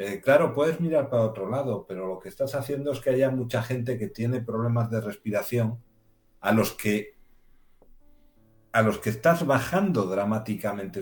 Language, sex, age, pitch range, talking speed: Spanish, male, 60-79, 110-135 Hz, 150 wpm